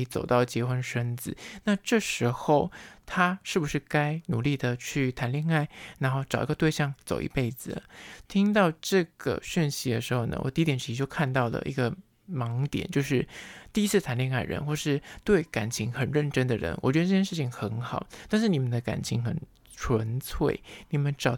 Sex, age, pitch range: male, 20-39, 125-165 Hz